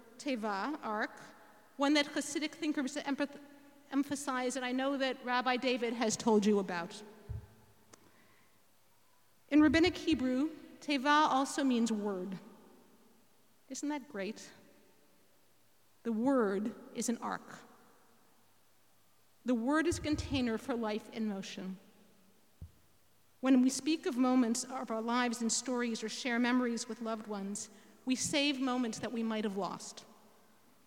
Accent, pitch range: American, 215-270 Hz